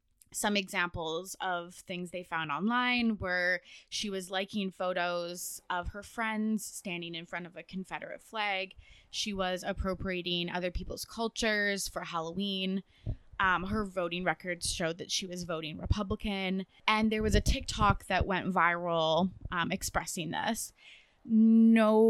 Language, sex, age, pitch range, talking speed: English, female, 20-39, 180-210 Hz, 140 wpm